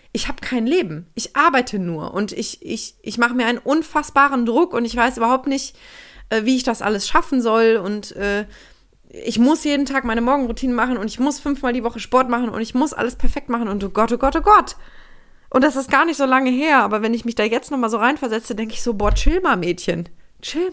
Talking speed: 235 wpm